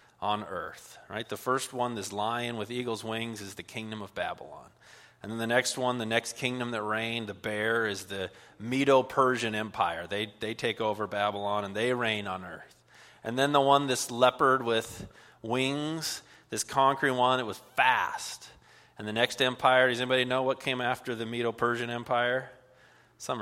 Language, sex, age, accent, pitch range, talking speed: English, male, 30-49, American, 110-125 Hz, 180 wpm